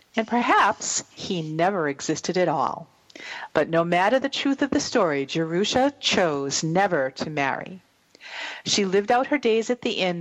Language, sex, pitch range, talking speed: English, female, 160-215 Hz, 165 wpm